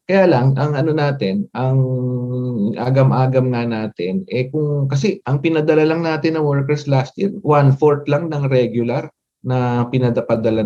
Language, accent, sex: English, Filipino, male